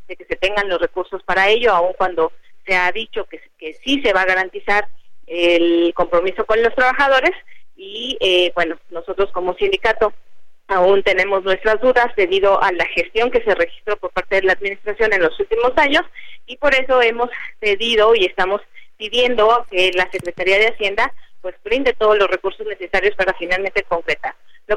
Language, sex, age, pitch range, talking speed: Spanish, female, 30-49, 185-245 Hz, 180 wpm